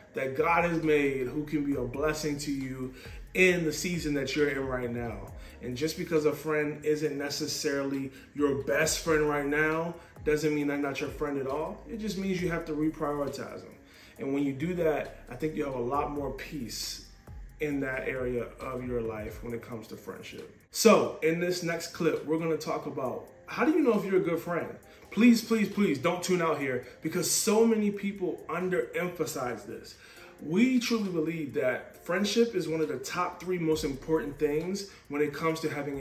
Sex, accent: male, American